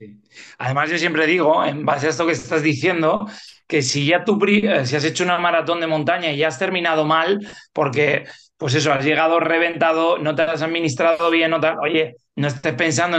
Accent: Spanish